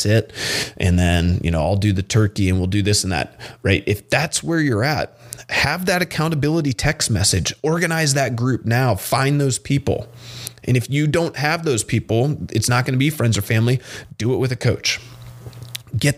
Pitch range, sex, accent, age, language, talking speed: 100-120 Hz, male, American, 30-49, English, 200 wpm